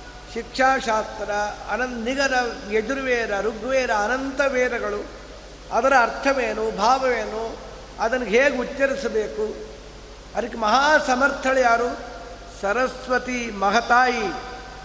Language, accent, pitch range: Kannada, native, 245-280 Hz